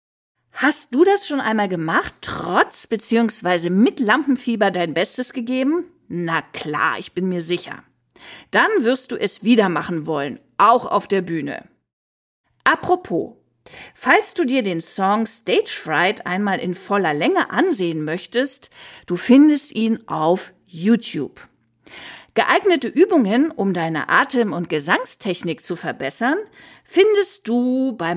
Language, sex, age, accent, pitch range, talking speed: German, female, 50-69, German, 180-275 Hz, 130 wpm